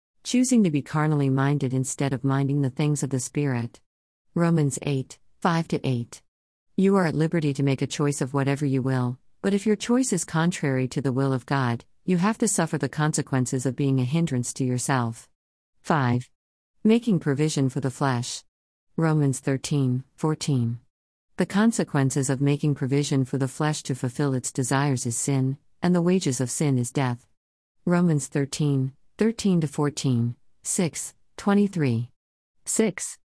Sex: female